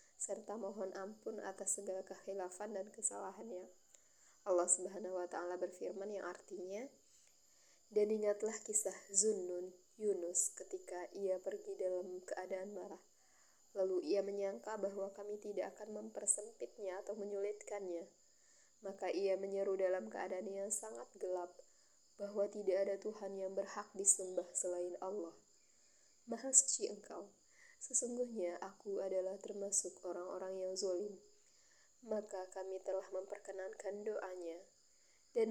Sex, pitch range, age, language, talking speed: female, 185-210 Hz, 20-39, Indonesian, 115 wpm